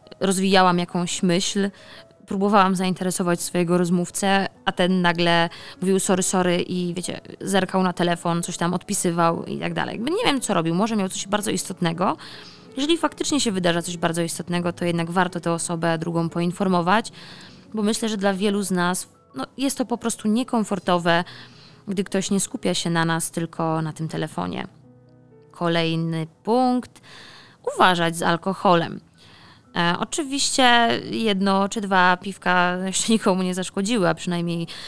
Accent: native